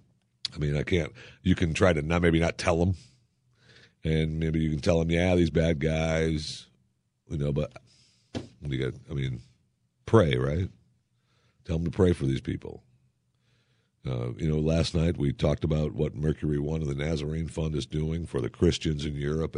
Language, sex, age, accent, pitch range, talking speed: English, male, 50-69, American, 75-115 Hz, 185 wpm